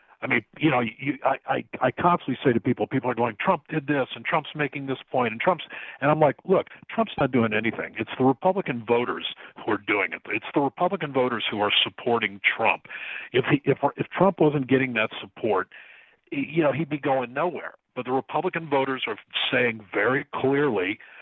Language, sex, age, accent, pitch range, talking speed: English, male, 50-69, American, 125-150 Hz, 205 wpm